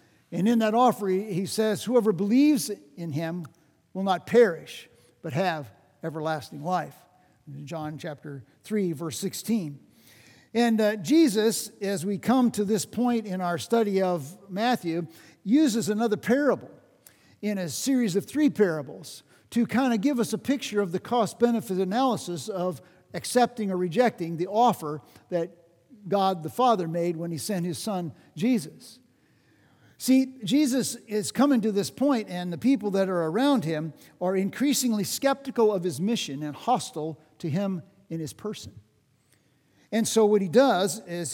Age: 50-69